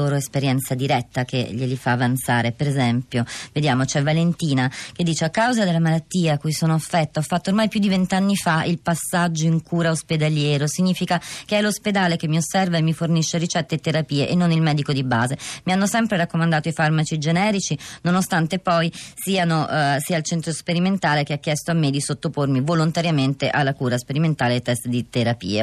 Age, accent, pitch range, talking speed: 30-49, native, 145-180 Hz, 195 wpm